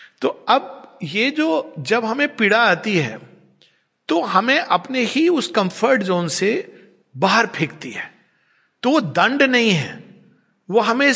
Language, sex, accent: Hindi, male, native